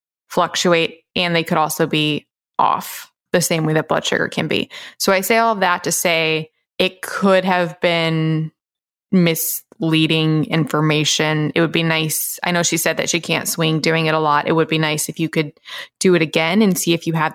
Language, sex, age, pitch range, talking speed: English, female, 20-39, 160-200 Hz, 205 wpm